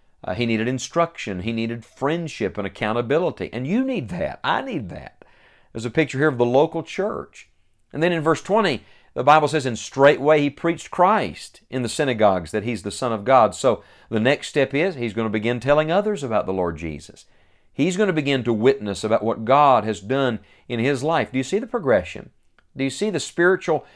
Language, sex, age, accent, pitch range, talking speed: English, male, 40-59, American, 110-150 Hz, 215 wpm